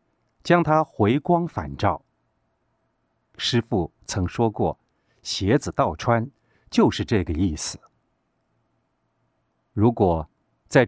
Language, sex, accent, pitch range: Chinese, male, native, 95-130 Hz